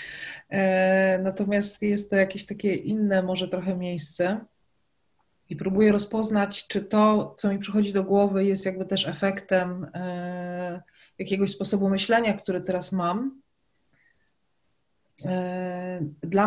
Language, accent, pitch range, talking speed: Polish, native, 185-215 Hz, 110 wpm